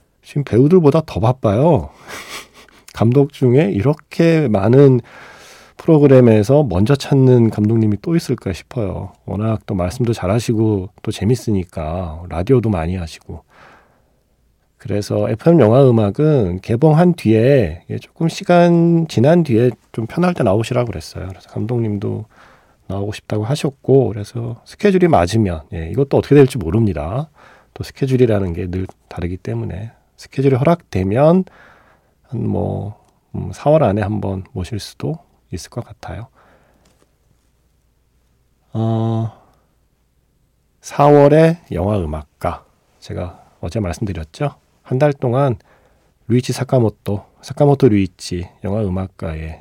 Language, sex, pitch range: Korean, male, 100-140 Hz